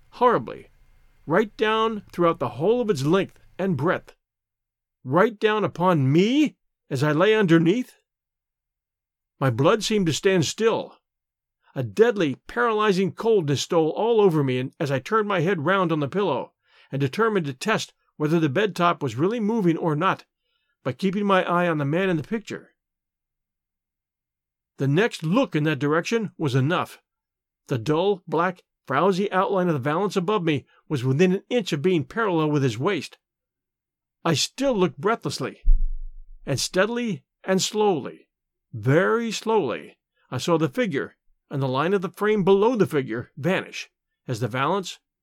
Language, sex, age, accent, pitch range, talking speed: English, male, 50-69, American, 150-210 Hz, 160 wpm